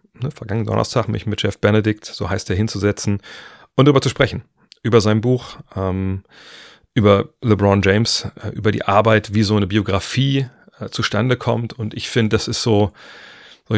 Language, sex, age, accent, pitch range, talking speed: German, male, 30-49, German, 100-115 Hz, 170 wpm